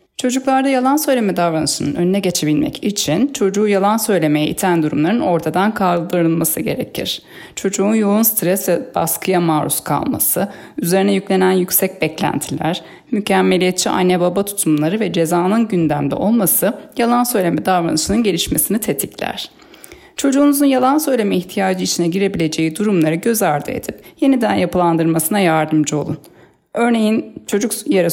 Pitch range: 170-225 Hz